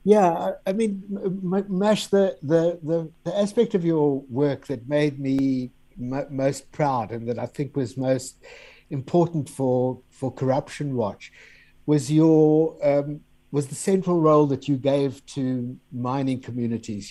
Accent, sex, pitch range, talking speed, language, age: British, male, 125-160 Hz, 150 wpm, English, 60-79